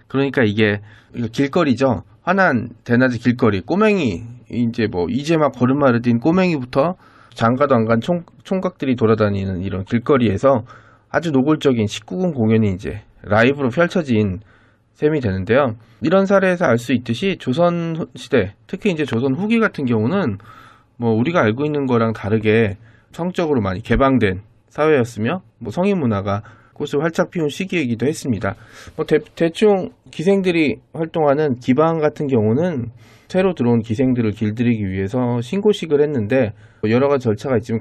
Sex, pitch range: male, 110-150 Hz